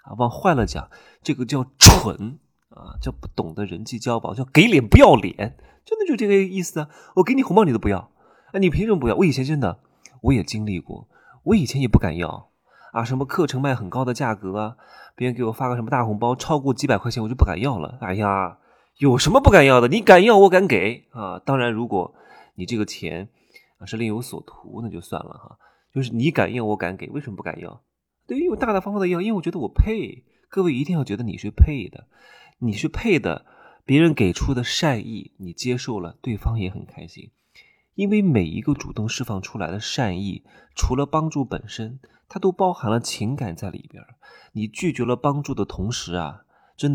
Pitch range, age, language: 105-145 Hz, 20-39, Chinese